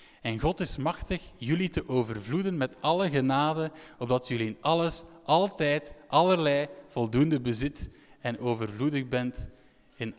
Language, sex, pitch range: Dutch, male, 120-160 Hz